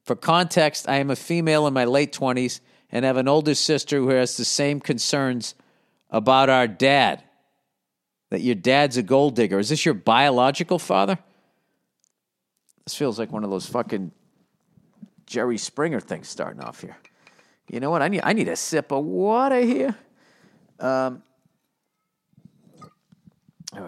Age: 50-69